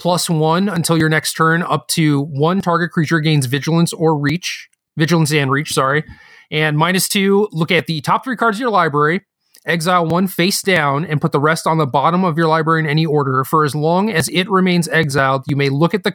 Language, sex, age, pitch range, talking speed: English, male, 30-49, 145-170 Hz, 225 wpm